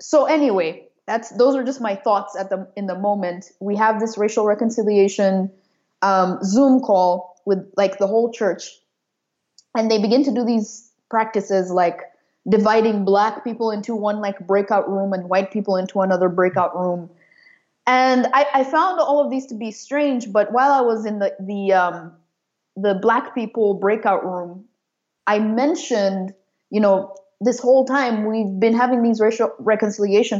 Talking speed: 170 wpm